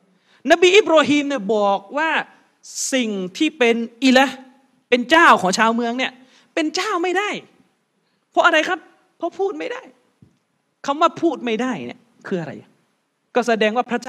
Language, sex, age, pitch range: Thai, male, 30-49, 195-285 Hz